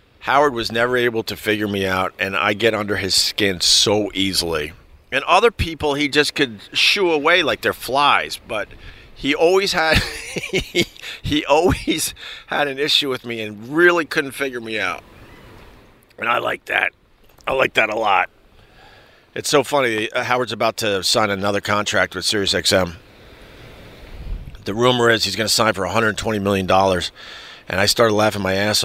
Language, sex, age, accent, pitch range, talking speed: English, male, 50-69, American, 100-130 Hz, 165 wpm